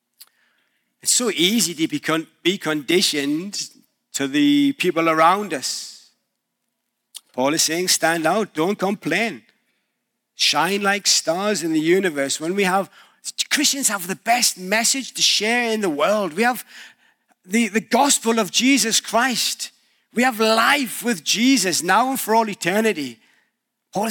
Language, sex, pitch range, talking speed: English, male, 190-255 Hz, 140 wpm